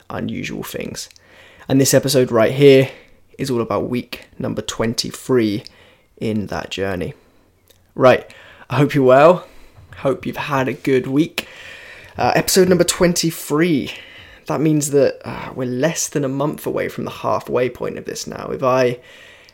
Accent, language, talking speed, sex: British, English, 155 wpm, male